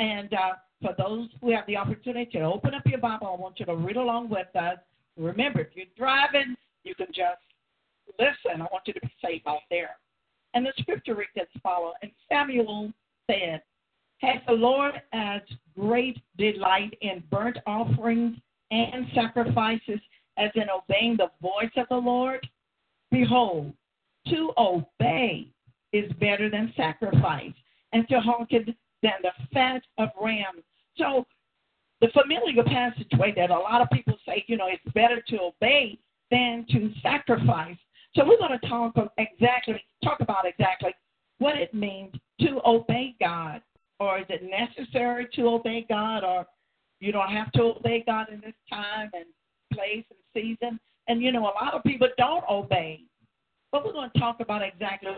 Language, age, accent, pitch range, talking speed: English, 50-69, American, 185-240 Hz, 165 wpm